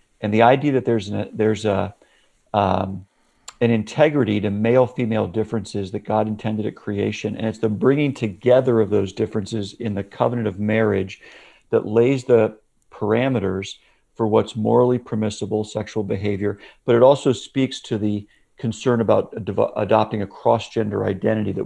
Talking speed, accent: 145 wpm, American